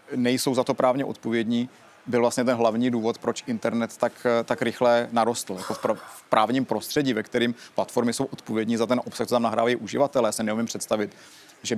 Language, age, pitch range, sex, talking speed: Czech, 30-49, 115-140 Hz, male, 185 wpm